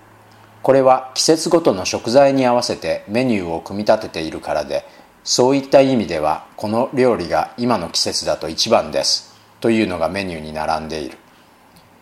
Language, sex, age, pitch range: Japanese, male, 40-59, 90-130 Hz